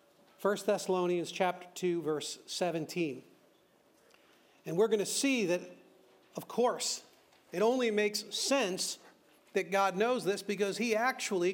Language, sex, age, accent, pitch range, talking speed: English, male, 40-59, American, 180-230 Hz, 130 wpm